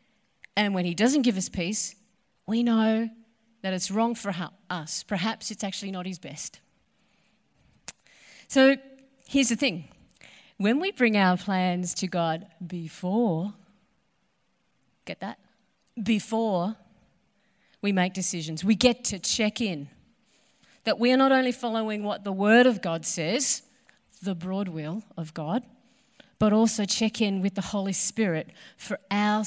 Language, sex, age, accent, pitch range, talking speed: English, female, 40-59, Australian, 190-245 Hz, 145 wpm